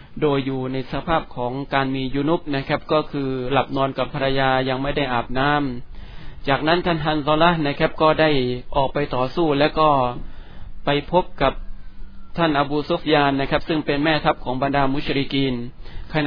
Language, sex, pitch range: Thai, male, 135-155 Hz